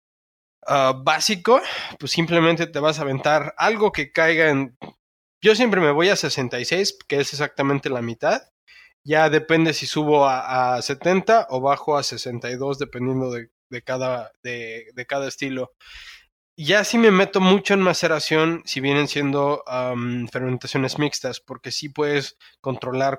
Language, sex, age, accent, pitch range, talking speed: Spanish, male, 20-39, Mexican, 130-160 Hz, 155 wpm